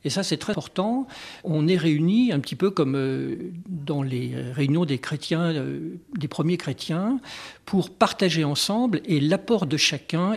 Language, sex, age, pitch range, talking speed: French, male, 50-69, 140-180 Hz, 155 wpm